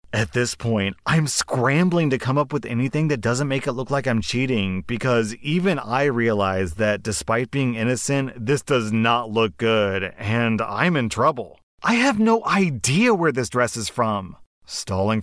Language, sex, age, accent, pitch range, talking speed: English, male, 30-49, American, 100-130 Hz, 175 wpm